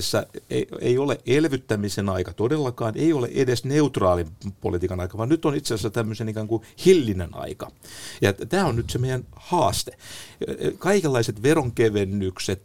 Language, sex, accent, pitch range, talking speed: Finnish, male, native, 95-120 Hz, 140 wpm